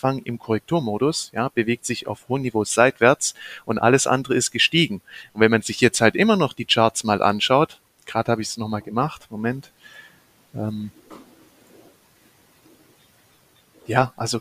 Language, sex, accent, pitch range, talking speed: German, male, German, 115-140 Hz, 150 wpm